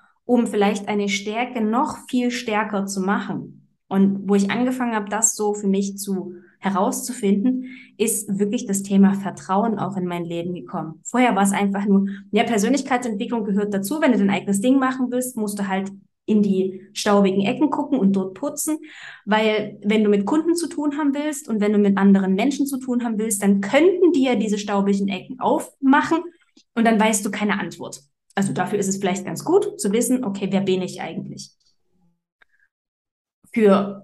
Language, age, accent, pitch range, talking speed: German, 20-39, German, 195-240 Hz, 185 wpm